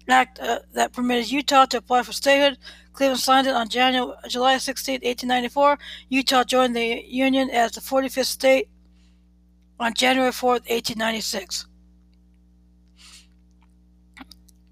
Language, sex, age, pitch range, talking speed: English, female, 60-79, 220-265 Hz, 120 wpm